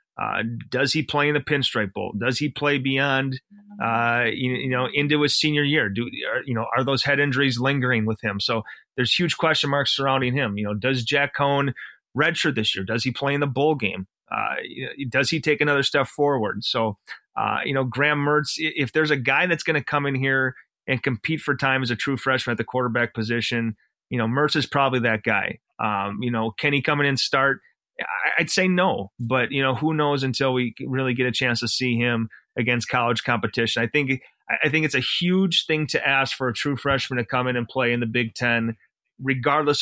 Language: English